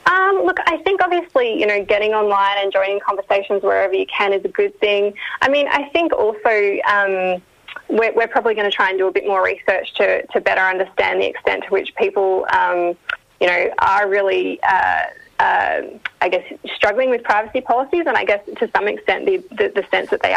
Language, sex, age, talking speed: English, female, 20-39, 205 wpm